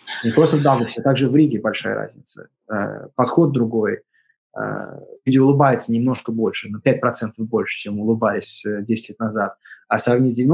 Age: 20-39